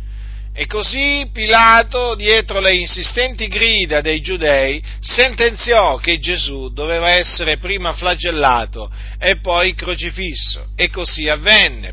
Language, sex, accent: Italian, male, native